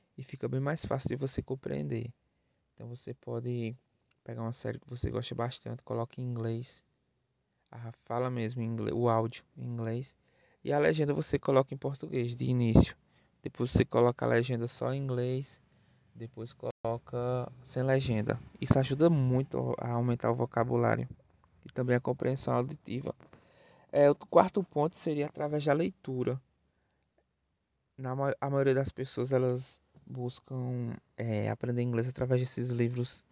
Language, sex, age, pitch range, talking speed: Portuguese, male, 20-39, 120-140 Hz, 150 wpm